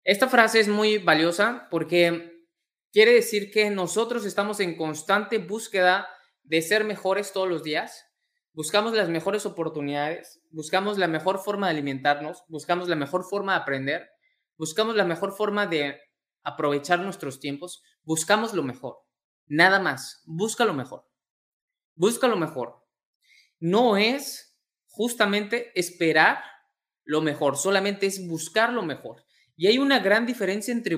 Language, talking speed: Spanish, 140 wpm